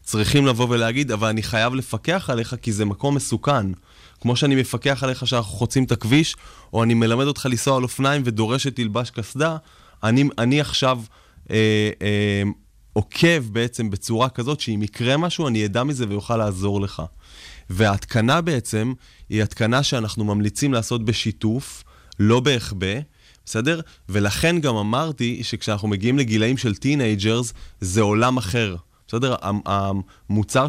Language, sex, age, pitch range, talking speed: Hebrew, male, 20-39, 105-130 Hz, 140 wpm